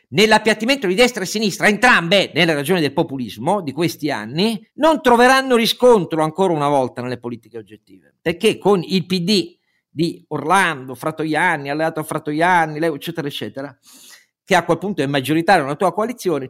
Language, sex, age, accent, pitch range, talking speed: Italian, male, 50-69, native, 140-190 Hz, 160 wpm